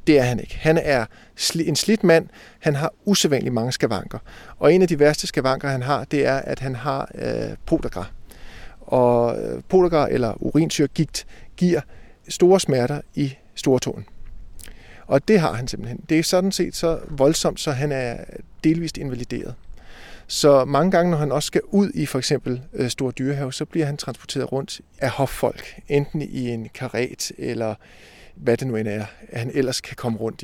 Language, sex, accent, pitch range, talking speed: Danish, male, native, 125-165 Hz, 180 wpm